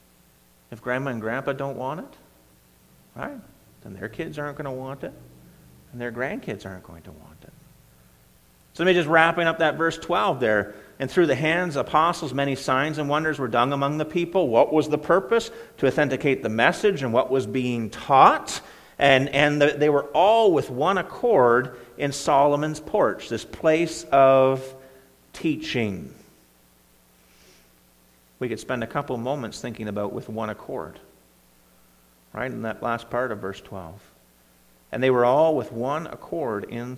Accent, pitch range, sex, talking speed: American, 100-150 Hz, male, 170 wpm